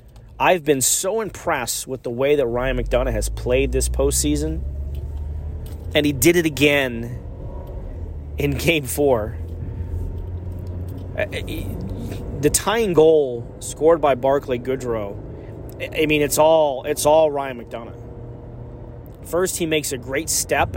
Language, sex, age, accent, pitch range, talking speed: English, male, 30-49, American, 105-155 Hz, 125 wpm